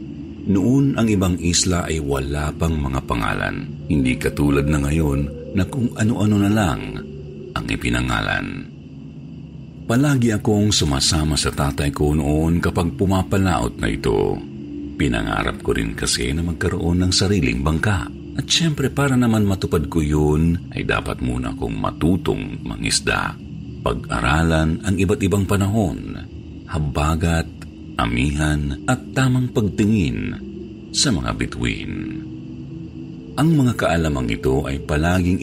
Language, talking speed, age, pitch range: Filipino, 125 wpm, 50-69, 75-100 Hz